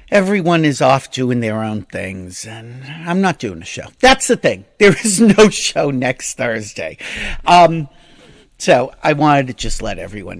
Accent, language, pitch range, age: American, English, 140-215 Hz, 50-69